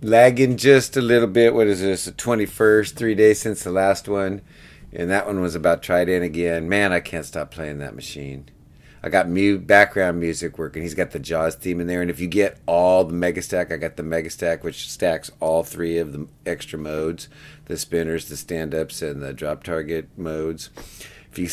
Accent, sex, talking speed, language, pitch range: American, male, 205 wpm, English, 85-105 Hz